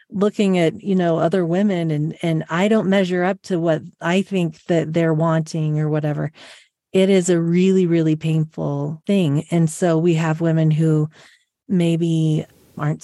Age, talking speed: 30-49, 165 wpm